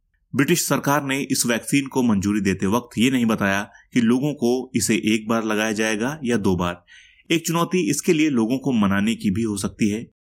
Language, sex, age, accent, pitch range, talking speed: Hindi, male, 30-49, native, 100-140 Hz, 205 wpm